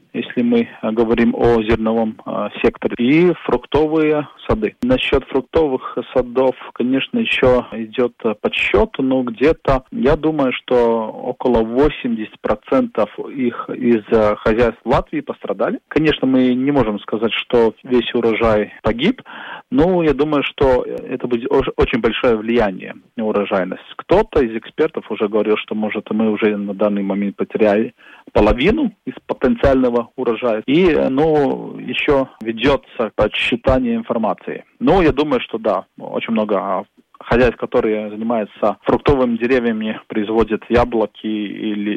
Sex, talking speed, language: male, 125 wpm, Russian